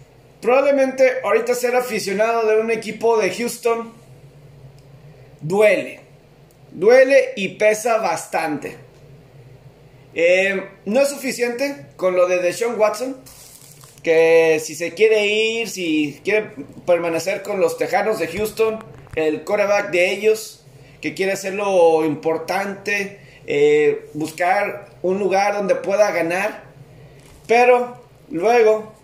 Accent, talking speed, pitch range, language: Mexican, 110 wpm, 155-215 Hz, Spanish